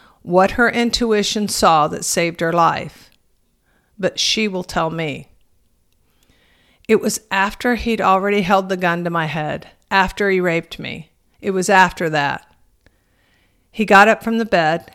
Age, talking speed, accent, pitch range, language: 50-69, 155 wpm, American, 165-205 Hz, English